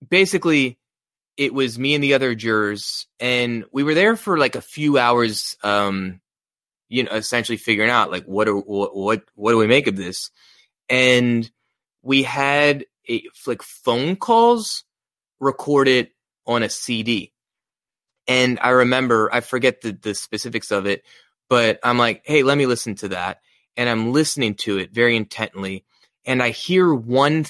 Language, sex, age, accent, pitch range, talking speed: English, male, 20-39, American, 110-140 Hz, 160 wpm